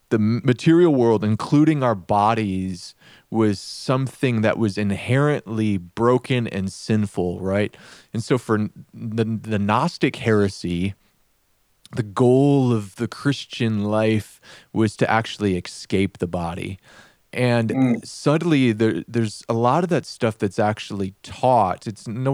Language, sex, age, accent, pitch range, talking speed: English, male, 30-49, American, 105-140 Hz, 130 wpm